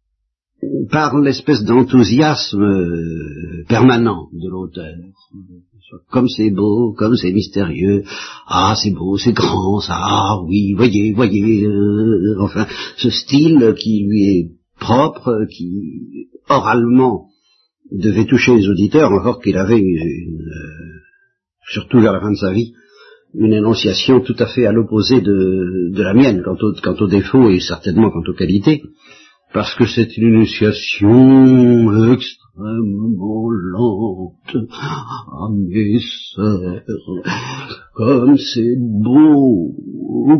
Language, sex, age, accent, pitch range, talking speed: French, male, 50-69, French, 95-120 Hz, 115 wpm